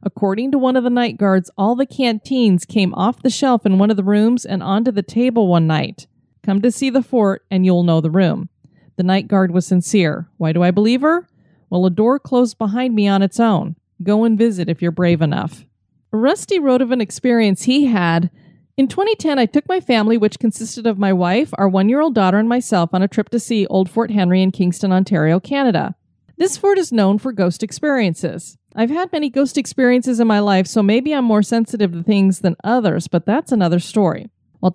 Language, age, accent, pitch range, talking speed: English, 30-49, American, 185-245 Hz, 220 wpm